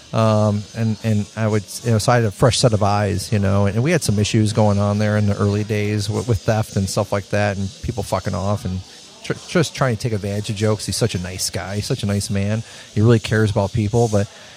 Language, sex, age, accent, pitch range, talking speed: English, male, 40-59, American, 100-120 Hz, 270 wpm